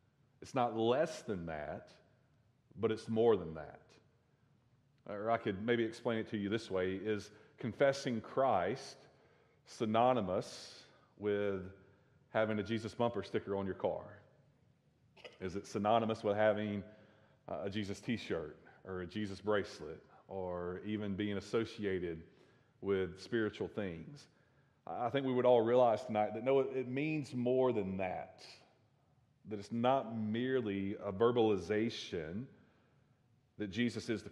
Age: 40-59